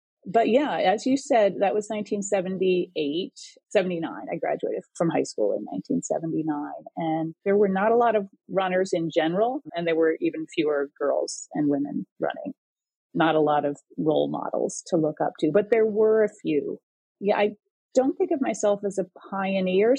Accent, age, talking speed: American, 30-49, 175 wpm